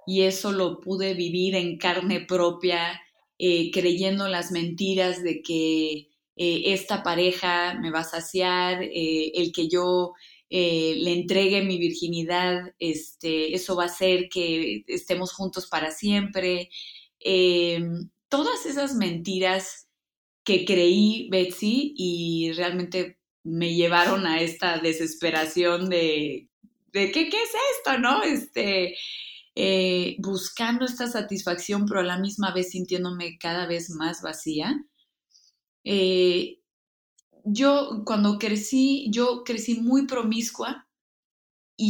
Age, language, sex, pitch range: 20-39, Spanish, female, 170-200 Hz